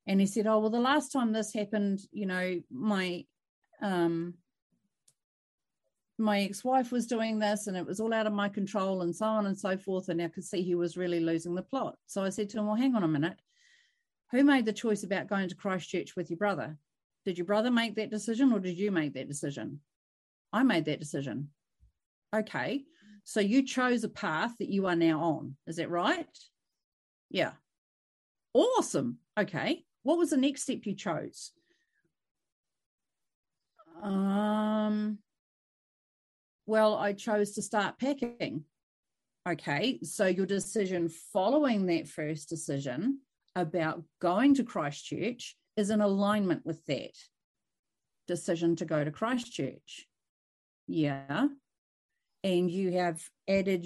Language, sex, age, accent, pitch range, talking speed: English, female, 40-59, Australian, 165-220 Hz, 155 wpm